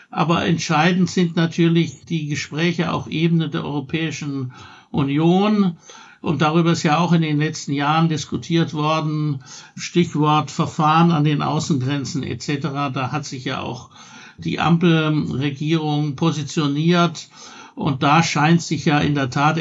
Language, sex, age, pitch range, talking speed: German, male, 60-79, 150-180 Hz, 135 wpm